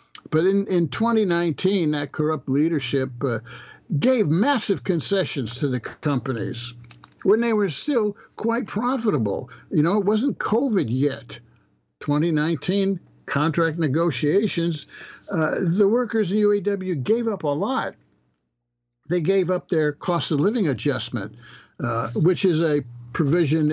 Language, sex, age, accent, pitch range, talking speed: English, male, 60-79, American, 130-175 Hz, 130 wpm